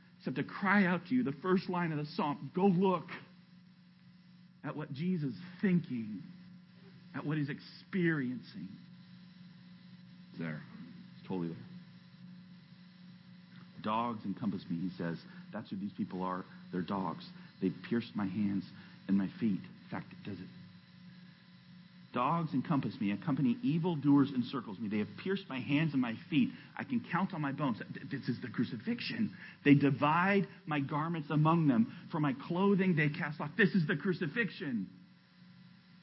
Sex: male